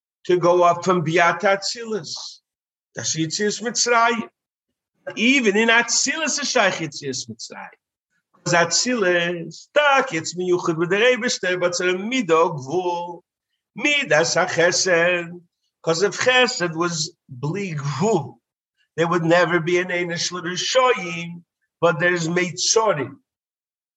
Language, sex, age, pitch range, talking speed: English, male, 50-69, 170-200 Hz, 115 wpm